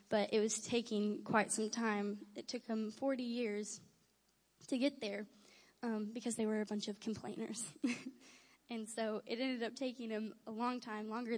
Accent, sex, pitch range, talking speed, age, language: American, female, 210-235 Hz, 180 wpm, 10-29, English